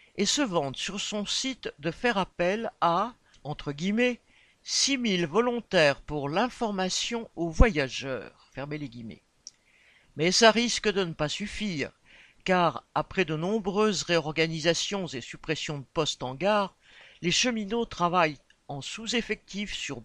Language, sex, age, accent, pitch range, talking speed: French, male, 60-79, French, 150-215 Hz, 135 wpm